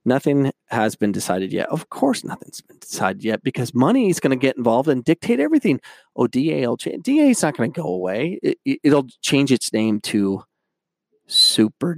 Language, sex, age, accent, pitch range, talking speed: English, male, 30-49, American, 115-175 Hz, 195 wpm